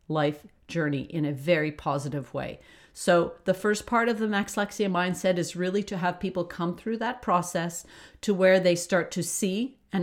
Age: 40-59